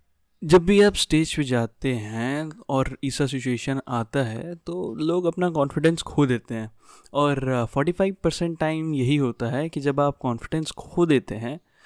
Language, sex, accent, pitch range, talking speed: Hindi, male, native, 120-150 Hz, 165 wpm